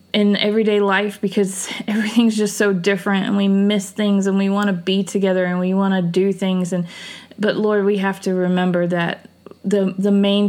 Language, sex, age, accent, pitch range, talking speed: English, female, 20-39, American, 180-205 Hz, 200 wpm